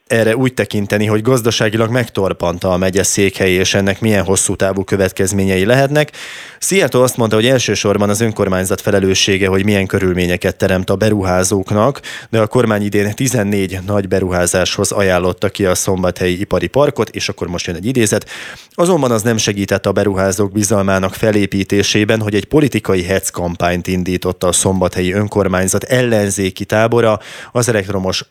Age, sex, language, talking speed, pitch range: 20-39, male, Hungarian, 150 wpm, 95-110 Hz